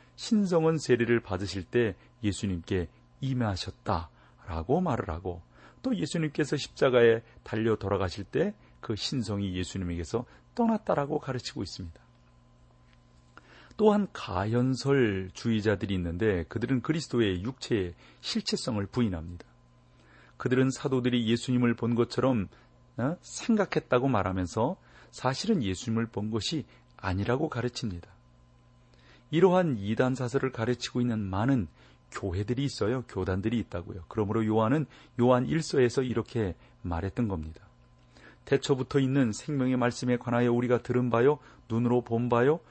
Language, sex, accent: Korean, male, native